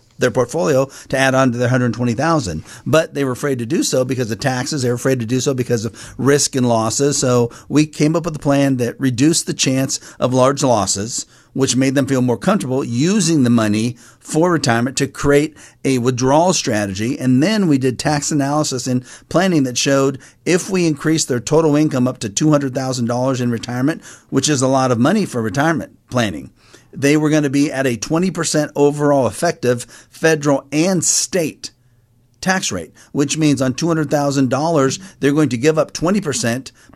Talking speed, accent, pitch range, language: 185 wpm, American, 125-150 Hz, English